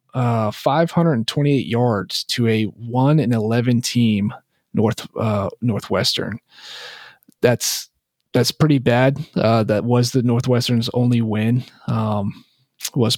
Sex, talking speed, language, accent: male, 115 wpm, English, American